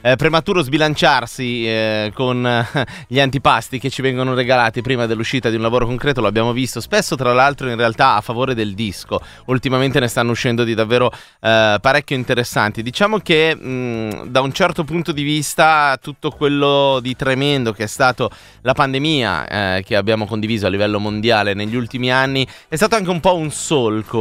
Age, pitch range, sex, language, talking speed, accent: 30-49, 105-140 Hz, male, Italian, 180 wpm, native